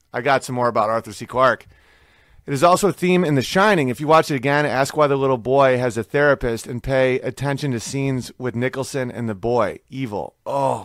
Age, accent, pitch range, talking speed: 30-49, American, 125-155 Hz, 225 wpm